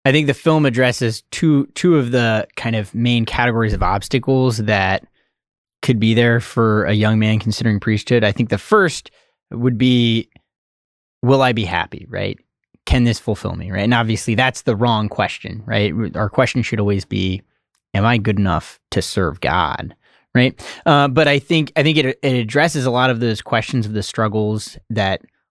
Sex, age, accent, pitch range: male, 20-39, American, 105-130 Hz